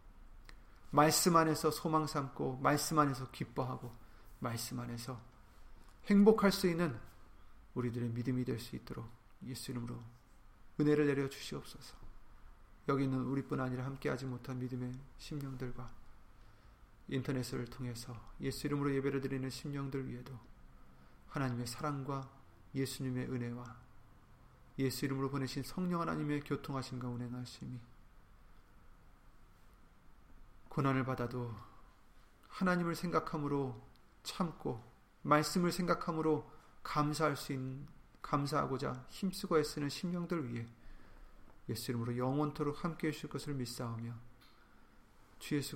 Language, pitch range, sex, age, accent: Korean, 120-145 Hz, male, 40-59, native